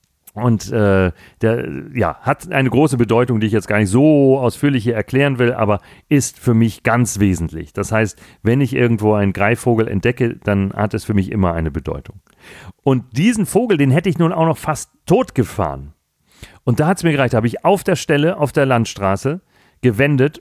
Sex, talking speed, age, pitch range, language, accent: male, 195 wpm, 40-59, 110-145 Hz, German, German